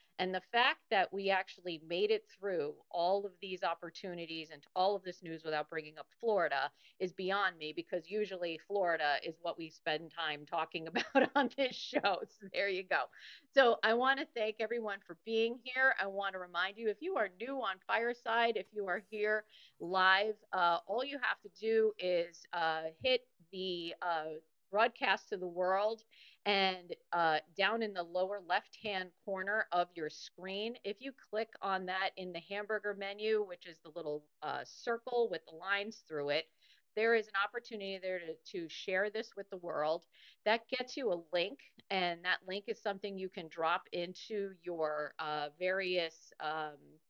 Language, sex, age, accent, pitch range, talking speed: English, female, 40-59, American, 175-220 Hz, 180 wpm